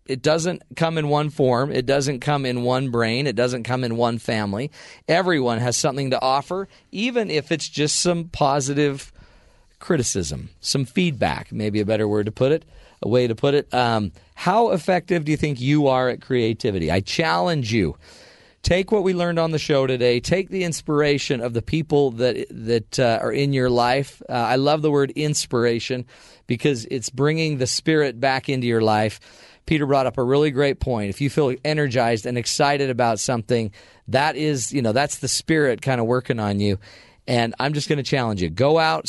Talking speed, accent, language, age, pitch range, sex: 200 wpm, American, English, 40-59, 115-150 Hz, male